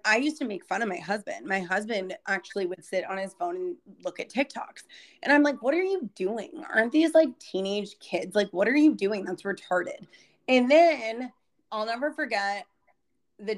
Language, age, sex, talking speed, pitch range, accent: English, 30-49, female, 200 wpm, 190-230 Hz, American